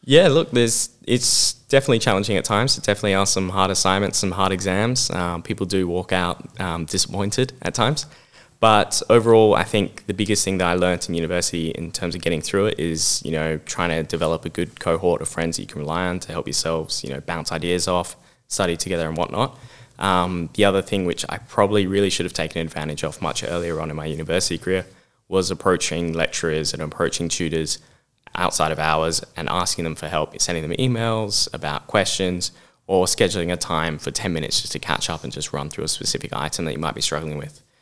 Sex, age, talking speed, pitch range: male, 10-29, 215 wpm, 80-100 Hz